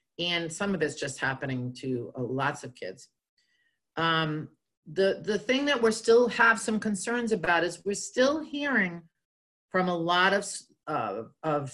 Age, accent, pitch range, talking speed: 50-69, American, 160-220 Hz, 165 wpm